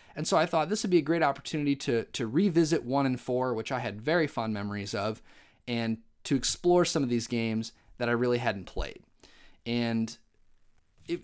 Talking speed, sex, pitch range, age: 200 wpm, male, 115-155 Hz, 30-49